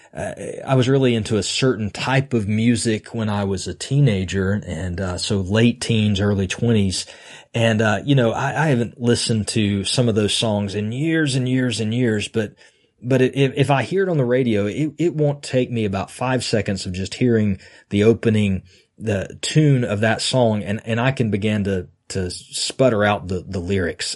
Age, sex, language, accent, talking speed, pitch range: 30-49, male, English, American, 200 wpm, 105-135 Hz